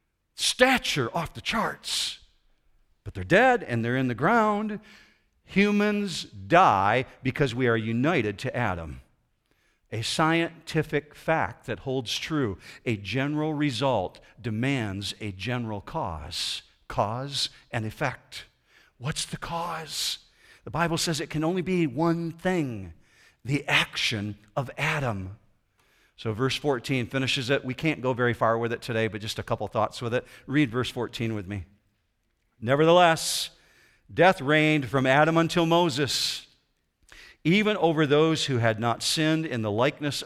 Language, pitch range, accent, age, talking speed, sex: English, 110-160 Hz, American, 50-69, 140 wpm, male